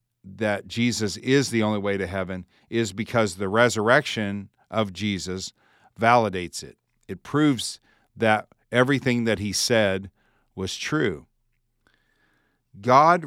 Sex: male